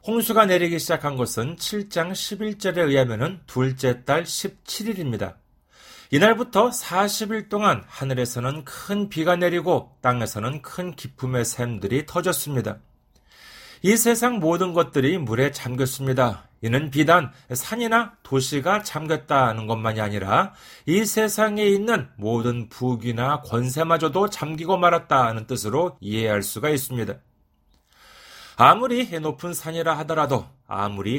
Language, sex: Korean, male